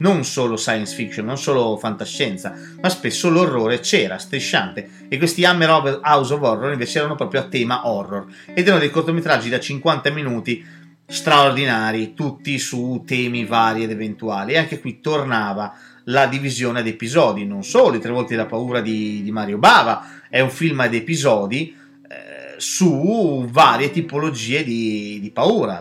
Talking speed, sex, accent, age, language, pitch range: 160 wpm, male, native, 30-49, Italian, 115-160 Hz